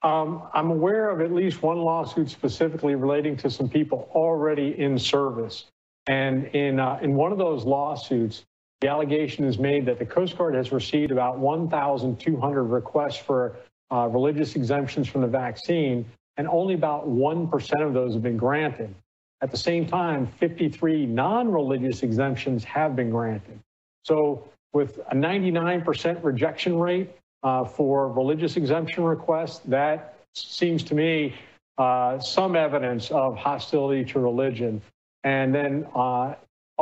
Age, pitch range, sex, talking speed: 50-69, 125-155 Hz, male, 145 wpm